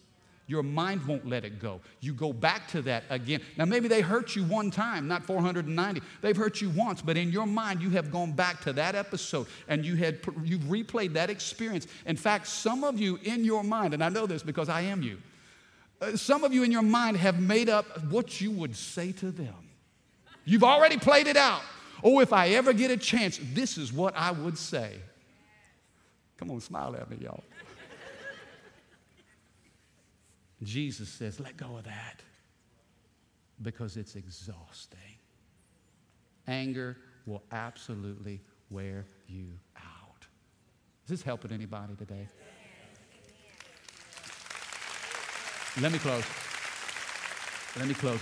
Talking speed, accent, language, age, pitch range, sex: 155 wpm, American, English, 50-69, 110-185 Hz, male